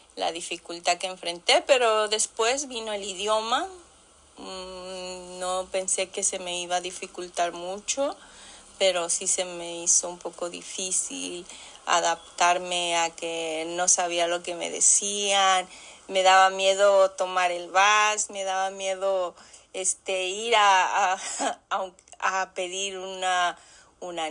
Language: Spanish